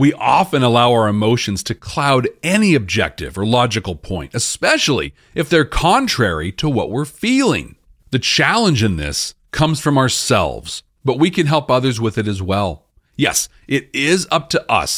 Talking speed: 170 wpm